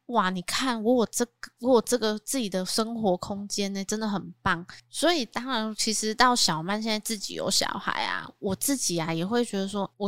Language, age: Chinese, 20-39